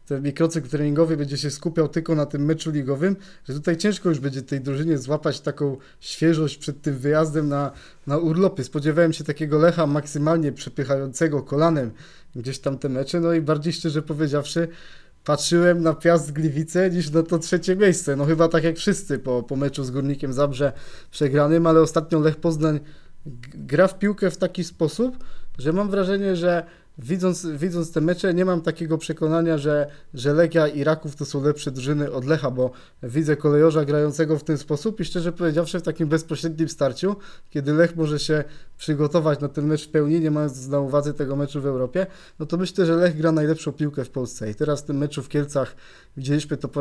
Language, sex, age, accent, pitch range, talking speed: Polish, male, 20-39, native, 145-165 Hz, 190 wpm